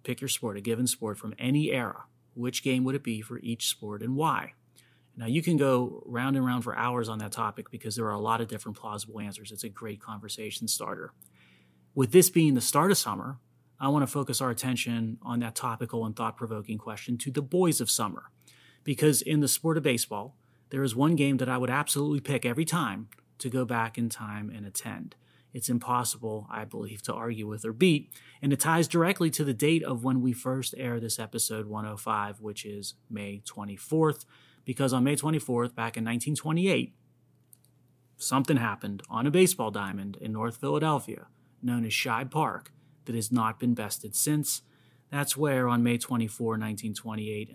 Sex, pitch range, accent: male, 110-135 Hz, American